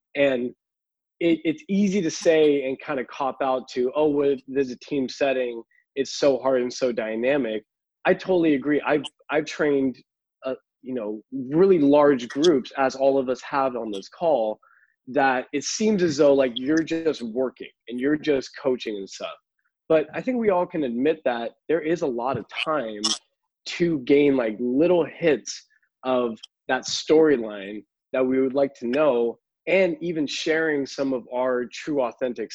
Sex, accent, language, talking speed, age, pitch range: male, American, English, 175 wpm, 20-39, 125-155 Hz